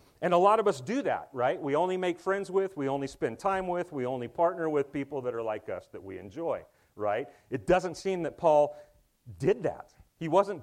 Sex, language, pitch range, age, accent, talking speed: male, English, 135-190 Hz, 40-59, American, 225 wpm